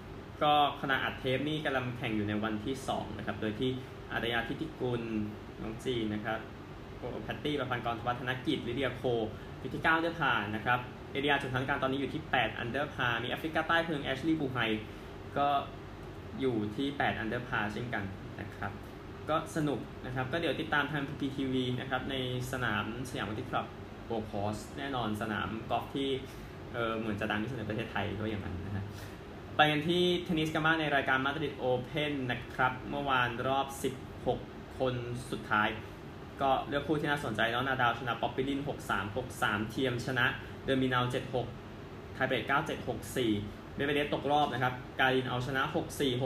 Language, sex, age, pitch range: Thai, male, 20-39, 110-140 Hz